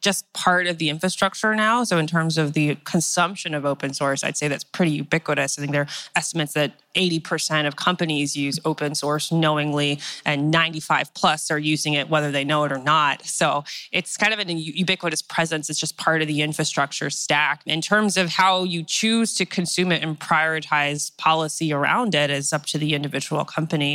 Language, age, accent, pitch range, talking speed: English, 20-39, American, 150-175 Hz, 200 wpm